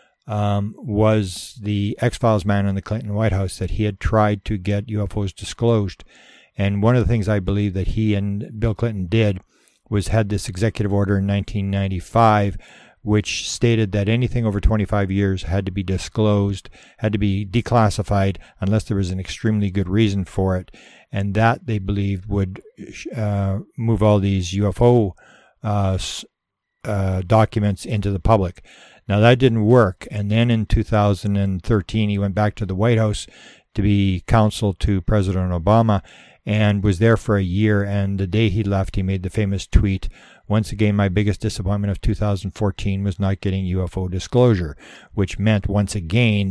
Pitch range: 100-110 Hz